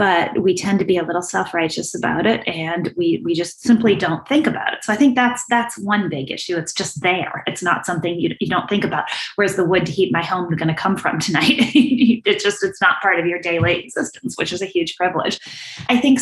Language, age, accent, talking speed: English, 30-49, American, 245 wpm